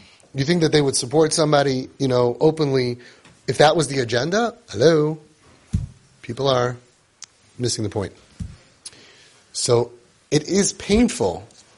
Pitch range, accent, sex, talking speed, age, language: 115-150 Hz, American, male, 125 wpm, 30-49, English